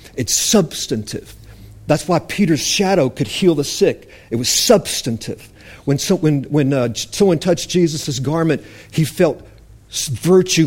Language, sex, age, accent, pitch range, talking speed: English, male, 50-69, American, 120-180 Hz, 140 wpm